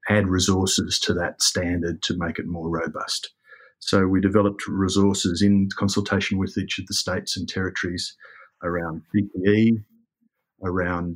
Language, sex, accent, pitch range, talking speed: English, male, Australian, 90-100 Hz, 140 wpm